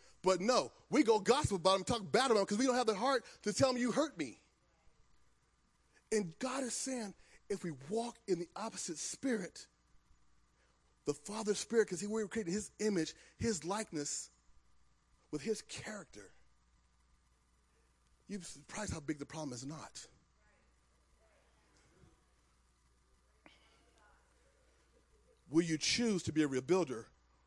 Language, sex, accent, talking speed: English, male, American, 140 wpm